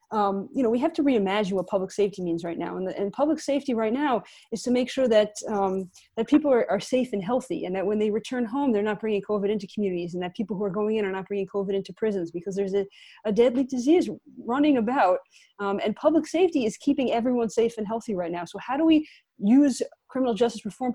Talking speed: 245 wpm